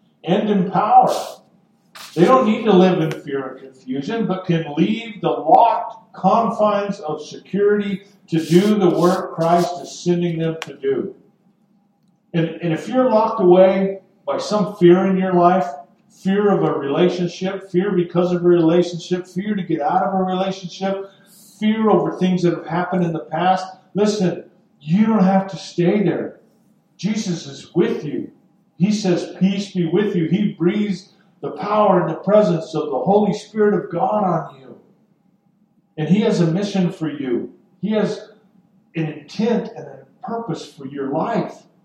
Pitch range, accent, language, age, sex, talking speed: 170-205 Hz, American, English, 50-69, male, 165 wpm